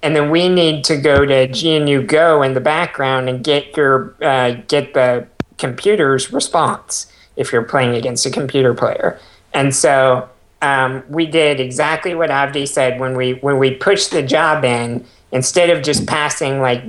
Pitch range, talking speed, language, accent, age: 130-160 Hz, 175 wpm, English, American, 50-69